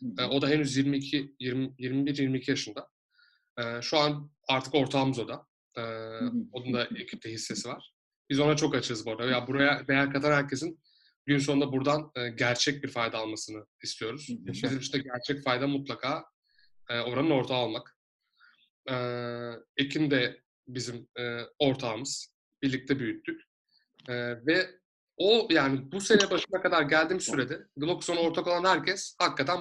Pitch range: 125-160 Hz